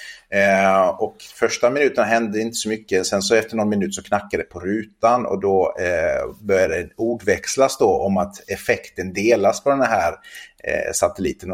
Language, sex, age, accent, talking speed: Swedish, male, 30-49, native, 165 wpm